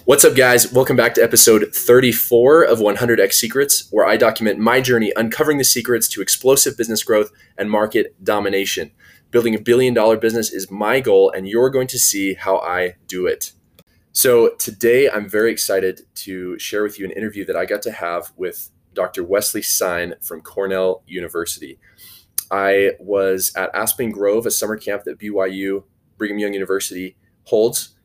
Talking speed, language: 175 wpm, English